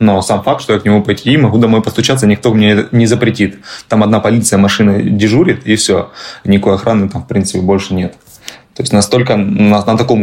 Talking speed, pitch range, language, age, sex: 210 wpm, 100-120 Hz, Russian, 20-39, male